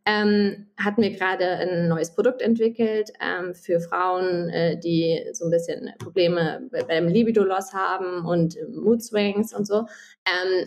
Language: German